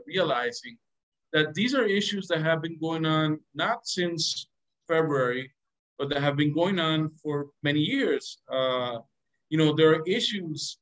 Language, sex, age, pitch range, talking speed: English, male, 50-69, 140-175 Hz, 155 wpm